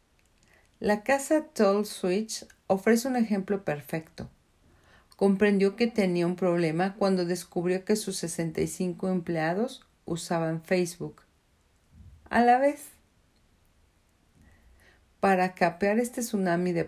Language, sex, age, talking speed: Spanish, female, 40-59, 105 wpm